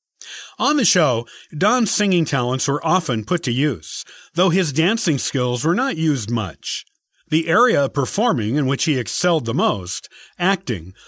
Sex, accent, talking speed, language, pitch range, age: male, American, 160 wpm, English, 125-180 Hz, 50-69